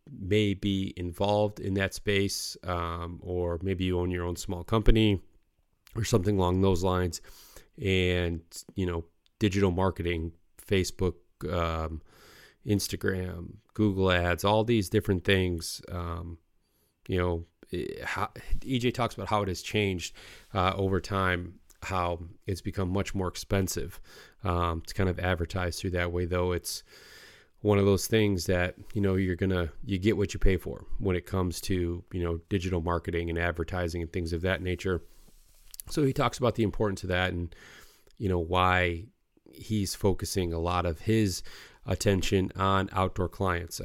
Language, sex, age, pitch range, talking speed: English, male, 30-49, 90-100 Hz, 160 wpm